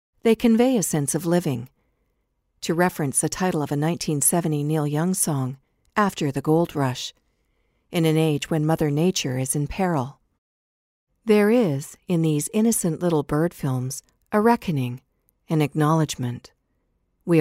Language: English